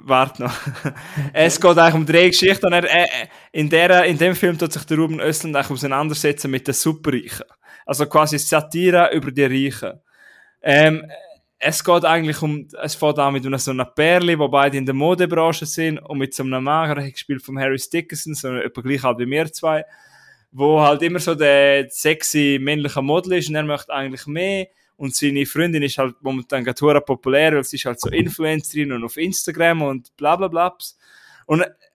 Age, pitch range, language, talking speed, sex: 20-39, 140-170 Hz, German, 185 wpm, male